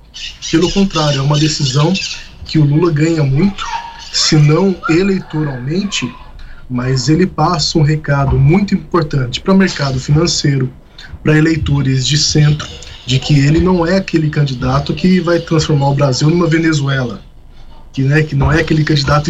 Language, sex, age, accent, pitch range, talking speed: Portuguese, male, 20-39, Brazilian, 135-165 Hz, 150 wpm